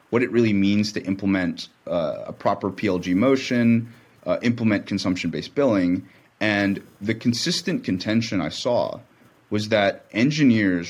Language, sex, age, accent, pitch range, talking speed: English, male, 30-49, American, 95-115 Hz, 130 wpm